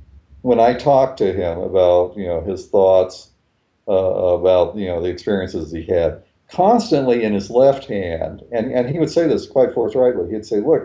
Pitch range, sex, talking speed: 95-130 Hz, male, 190 wpm